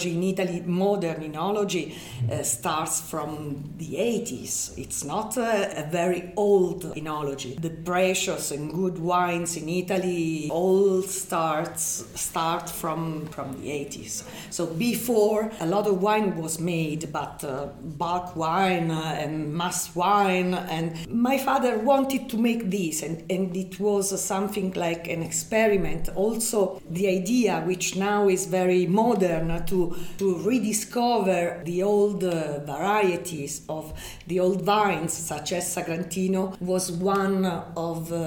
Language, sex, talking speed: English, female, 130 wpm